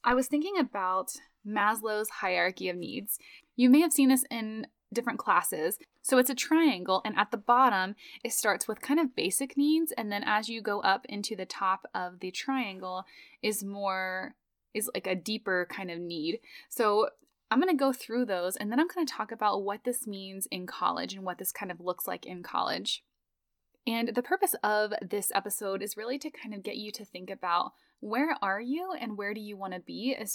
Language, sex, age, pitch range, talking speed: English, female, 10-29, 195-255 Hz, 210 wpm